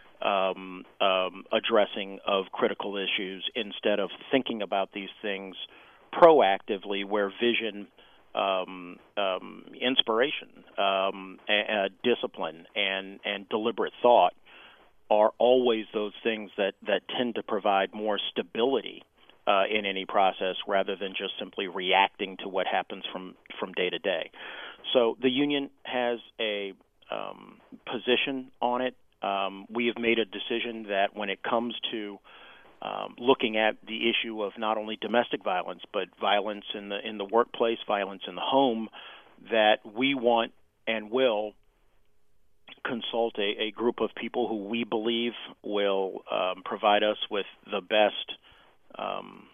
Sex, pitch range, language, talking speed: male, 100-120 Hz, English, 140 wpm